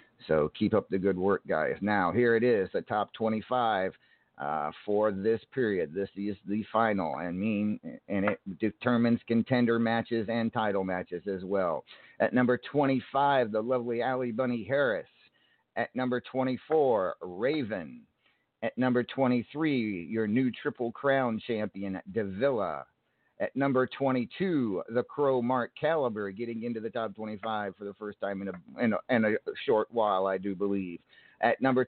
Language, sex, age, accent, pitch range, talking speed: English, male, 50-69, American, 105-130 Hz, 160 wpm